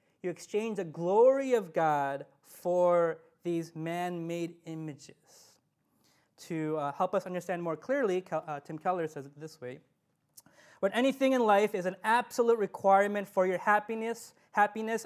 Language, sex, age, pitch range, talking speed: English, male, 20-39, 165-215 Hz, 145 wpm